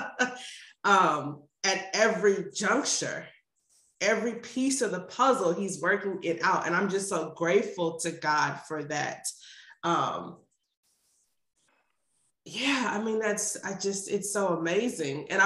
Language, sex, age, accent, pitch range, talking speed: English, female, 20-39, American, 170-220 Hz, 130 wpm